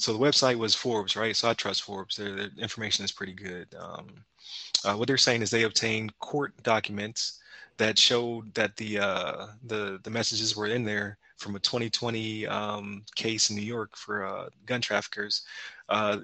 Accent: American